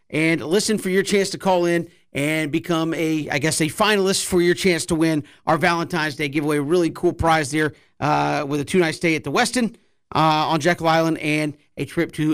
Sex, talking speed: male, 220 wpm